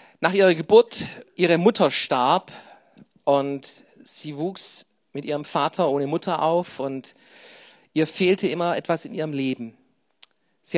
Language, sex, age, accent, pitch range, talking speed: German, male, 40-59, German, 150-190 Hz, 135 wpm